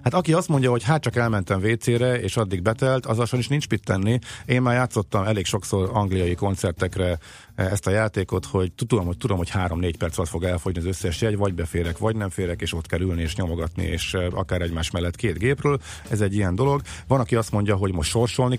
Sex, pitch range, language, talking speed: male, 95-120 Hz, Hungarian, 225 wpm